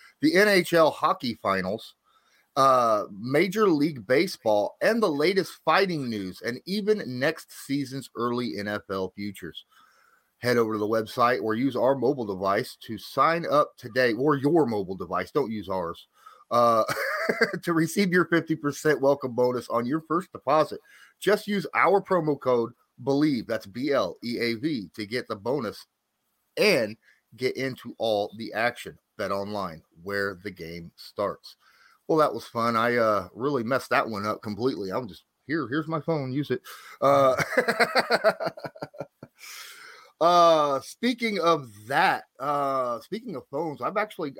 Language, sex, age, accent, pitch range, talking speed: English, male, 30-49, American, 115-170 Hz, 145 wpm